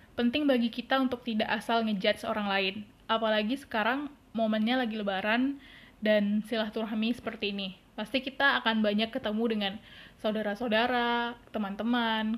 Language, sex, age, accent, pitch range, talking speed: Indonesian, female, 20-39, native, 220-250 Hz, 125 wpm